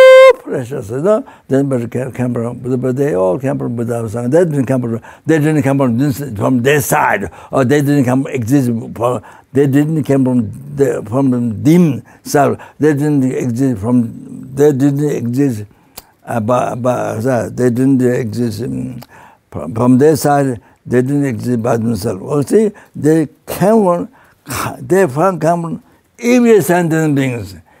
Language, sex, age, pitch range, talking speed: English, male, 60-79, 135-180 Hz, 140 wpm